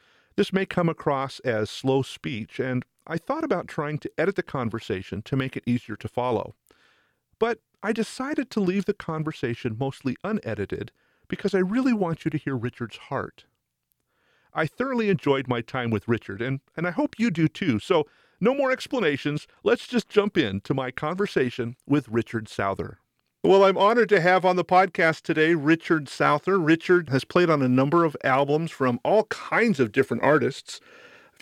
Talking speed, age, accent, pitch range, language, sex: 180 wpm, 40-59, American, 125-185 Hz, English, male